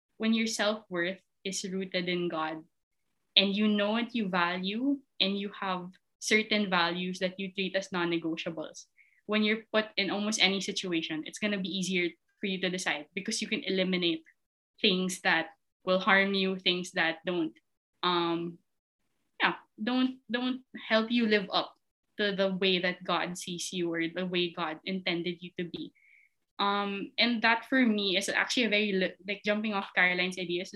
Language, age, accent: English, 20-39, Filipino